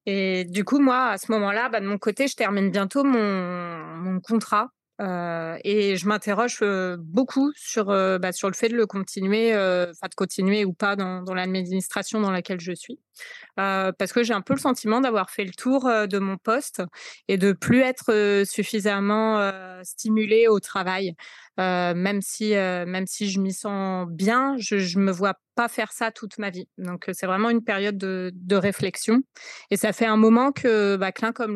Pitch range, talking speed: 190-230 Hz, 205 wpm